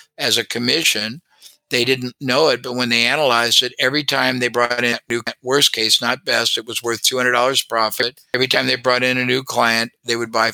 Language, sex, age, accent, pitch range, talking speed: English, male, 50-69, American, 115-130 Hz, 240 wpm